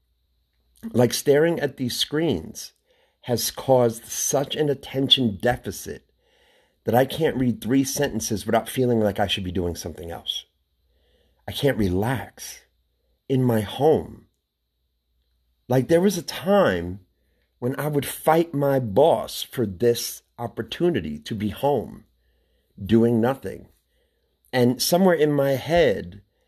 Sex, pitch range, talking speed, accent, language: male, 85-135 Hz, 125 wpm, American, English